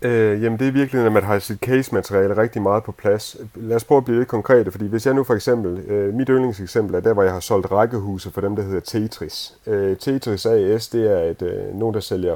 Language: Danish